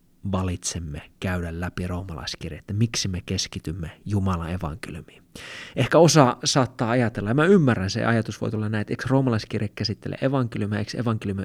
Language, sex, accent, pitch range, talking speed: English, male, Finnish, 95-125 Hz, 150 wpm